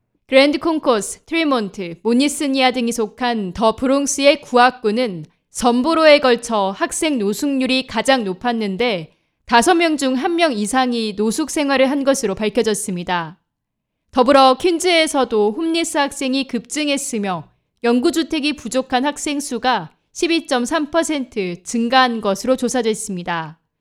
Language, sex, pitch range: Korean, female, 220-290 Hz